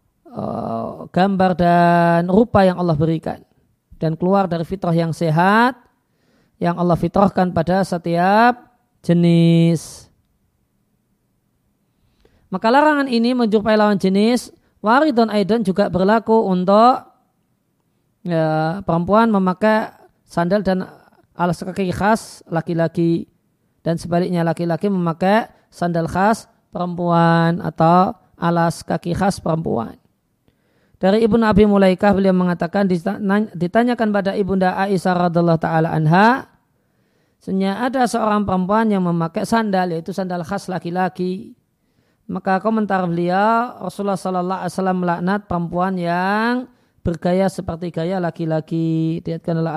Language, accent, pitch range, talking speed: Indonesian, native, 170-210 Hz, 110 wpm